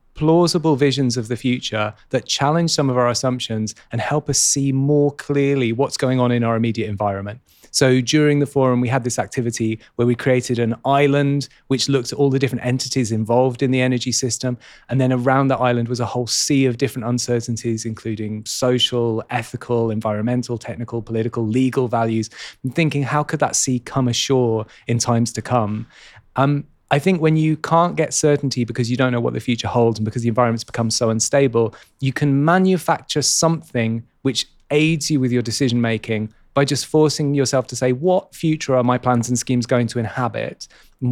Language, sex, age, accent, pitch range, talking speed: English, male, 30-49, British, 120-140 Hz, 190 wpm